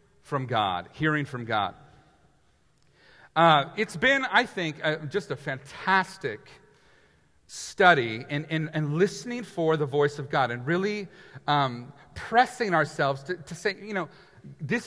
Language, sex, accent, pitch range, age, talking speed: English, male, American, 150-210 Hz, 40-59, 140 wpm